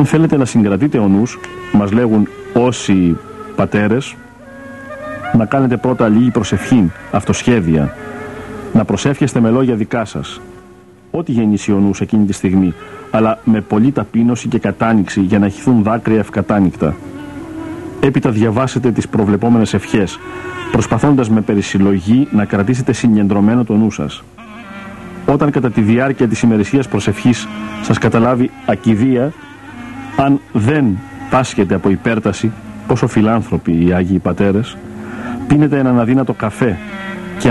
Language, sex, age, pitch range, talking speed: Greek, male, 50-69, 105-130 Hz, 125 wpm